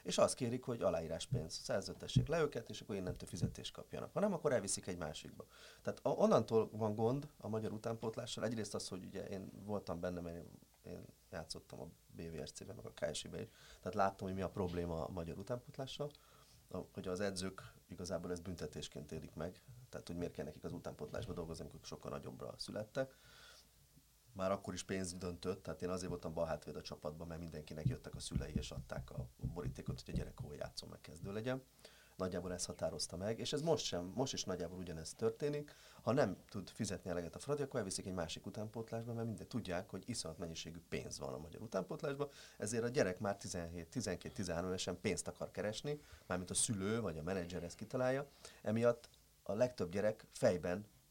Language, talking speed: Hungarian, 185 wpm